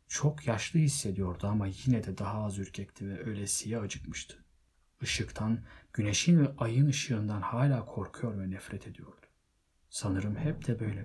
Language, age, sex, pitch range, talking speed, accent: Turkish, 40-59, male, 95-125 Hz, 140 wpm, native